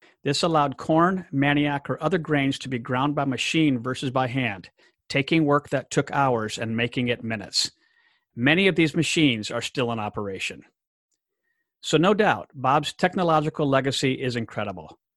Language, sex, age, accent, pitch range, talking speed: English, male, 50-69, American, 120-160 Hz, 160 wpm